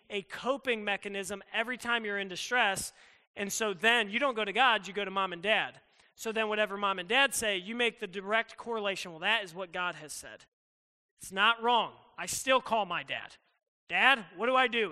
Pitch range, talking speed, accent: 185-225 Hz, 215 wpm, American